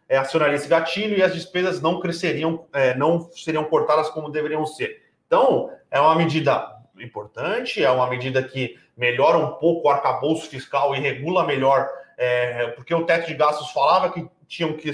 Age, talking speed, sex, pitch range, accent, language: 30-49, 165 wpm, male, 140-170 Hz, Brazilian, Portuguese